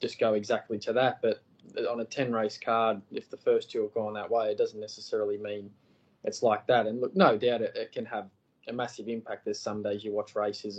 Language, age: English, 20-39